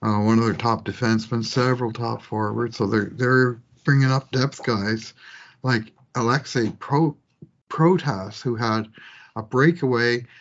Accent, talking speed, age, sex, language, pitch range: American, 135 wpm, 60-79, male, English, 110-130 Hz